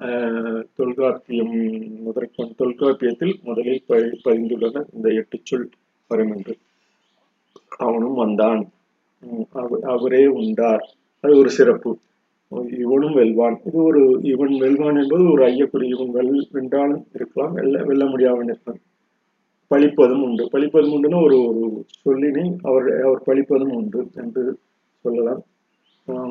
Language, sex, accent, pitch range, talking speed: Tamil, male, native, 120-140 Hz, 105 wpm